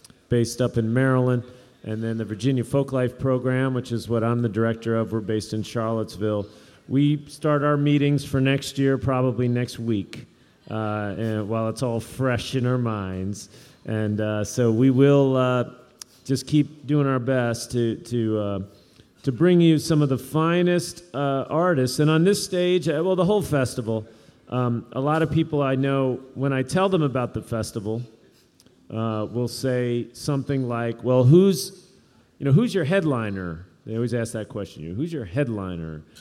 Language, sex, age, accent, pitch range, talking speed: English, male, 40-59, American, 115-145 Hz, 175 wpm